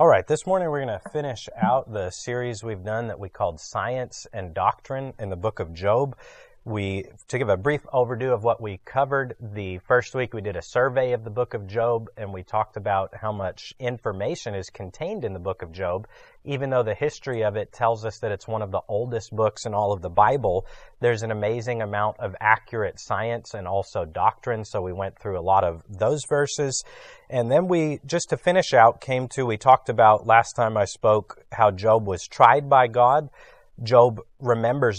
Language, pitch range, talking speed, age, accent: English, 105-135 Hz, 210 wpm, 30-49, American